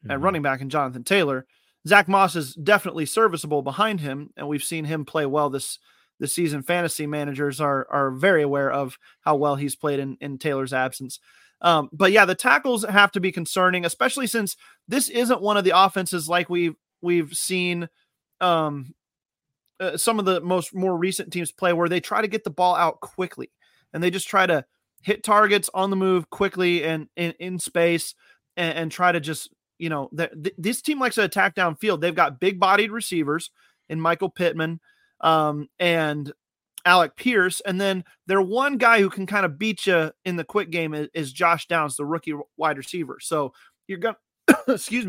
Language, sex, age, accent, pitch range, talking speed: English, male, 30-49, American, 155-195 Hz, 190 wpm